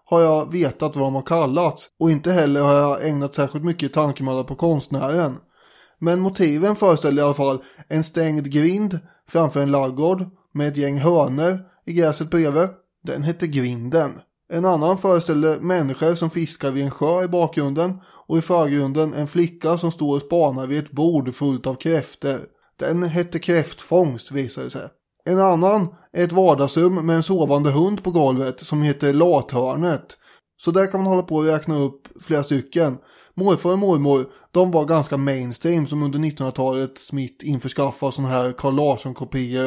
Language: English